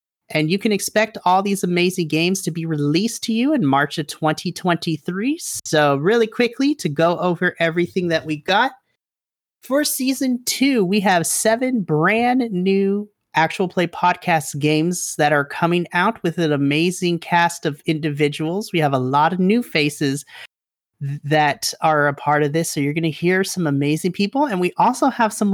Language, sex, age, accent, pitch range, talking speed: English, male, 30-49, American, 155-205 Hz, 175 wpm